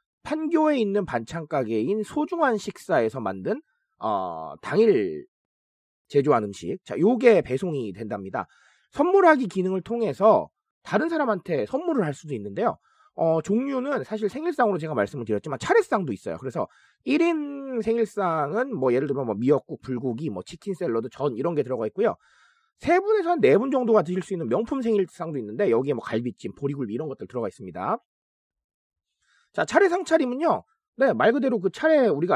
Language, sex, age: Korean, male, 30-49